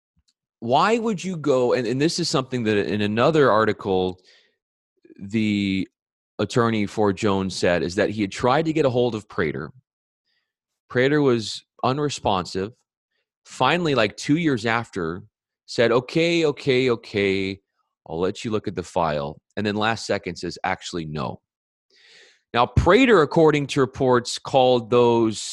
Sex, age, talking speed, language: male, 30-49, 145 wpm, English